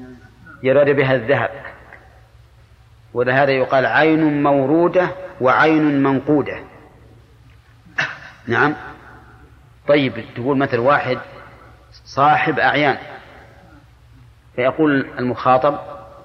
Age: 40-59